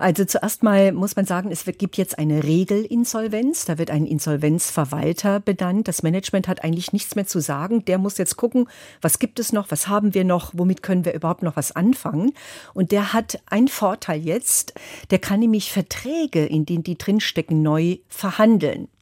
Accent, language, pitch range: German, German, 165-200 Hz